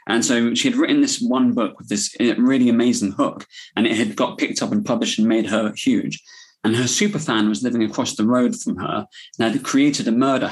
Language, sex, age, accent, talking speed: English, male, 20-39, British, 230 wpm